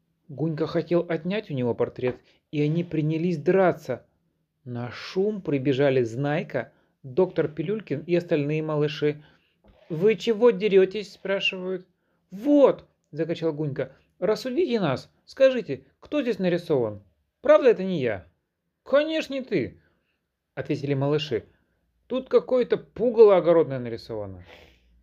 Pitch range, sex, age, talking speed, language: 130-210 Hz, male, 30-49, 110 wpm, Russian